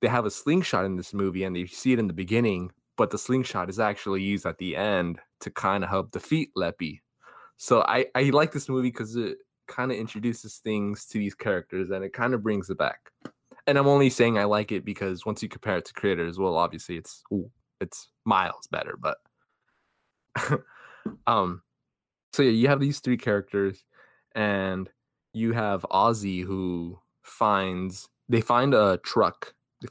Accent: American